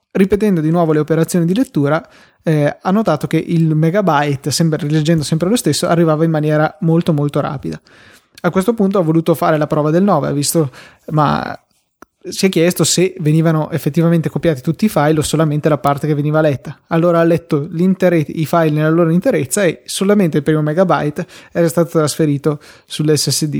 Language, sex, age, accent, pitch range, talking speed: Italian, male, 20-39, native, 150-170 Hz, 175 wpm